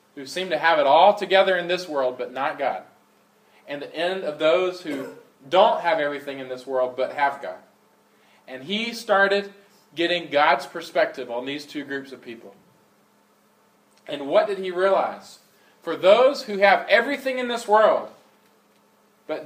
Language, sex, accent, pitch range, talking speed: English, male, American, 135-205 Hz, 165 wpm